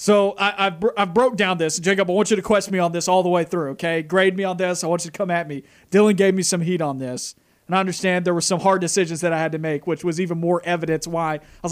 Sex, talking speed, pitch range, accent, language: male, 300 wpm, 165-195 Hz, American, English